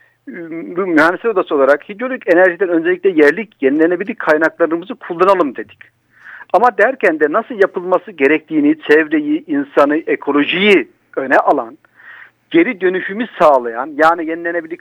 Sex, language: male, Turkish